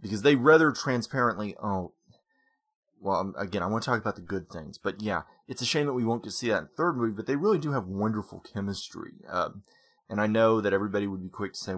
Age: 30-49